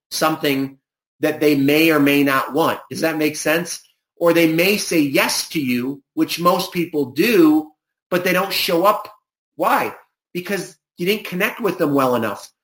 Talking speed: 175 wpm